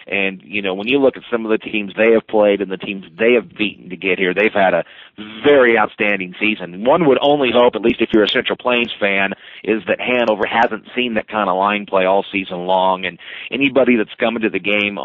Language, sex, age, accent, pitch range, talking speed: English, male, 40-59, American, 100-120 Hz, 245 wpm